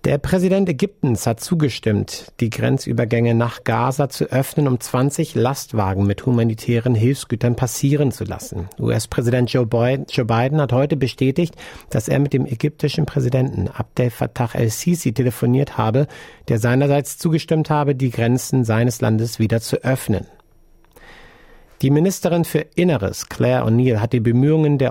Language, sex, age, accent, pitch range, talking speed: German, male, 50-69, German, 115-145 Hz, 140 wpm